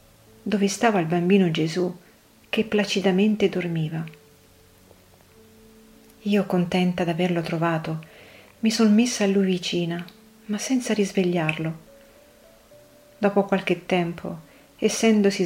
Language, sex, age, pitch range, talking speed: Italian, female, 40-59, 160-200 Hz, 95 wpm